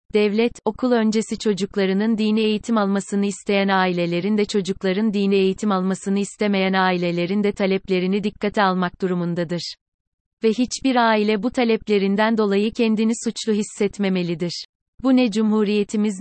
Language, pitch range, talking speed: Turkish, 195-225 Hz, 120 wpm